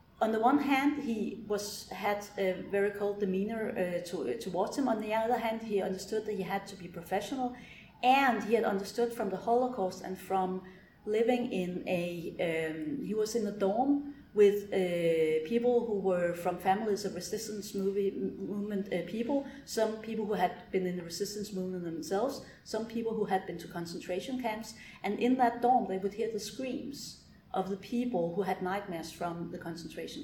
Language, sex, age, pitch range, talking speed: English, female, 40-59, 190-240 Hz, 185 wpm